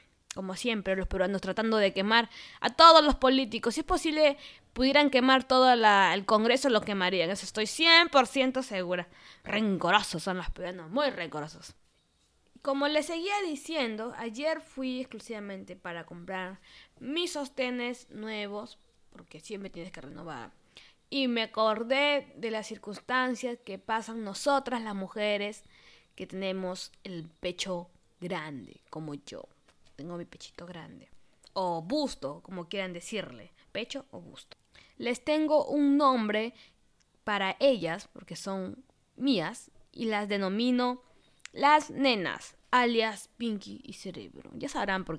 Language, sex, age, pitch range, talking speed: English, female, 20-39, 190-270 Hz, 135 wpm